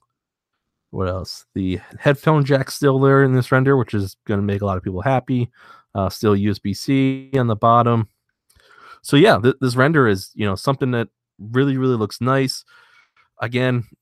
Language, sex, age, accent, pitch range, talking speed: English, male, 30-49, American, 100-125 Hz, 170 wpm